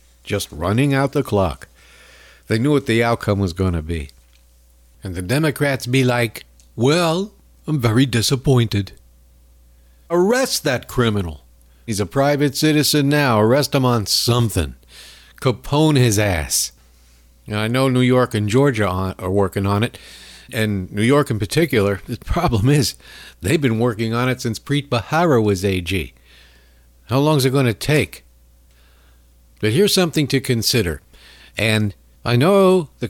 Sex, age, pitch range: male, 60-79, 85-130 Hz